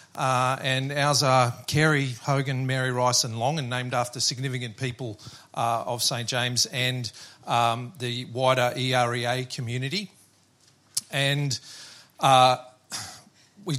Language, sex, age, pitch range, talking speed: English, male, 40-59, 120-140 Hz, 120 wpm